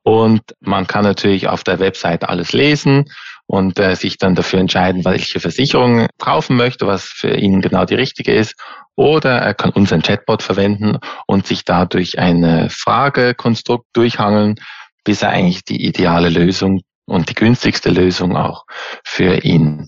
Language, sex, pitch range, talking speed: German, male, 90-115 Hz, 155 wpm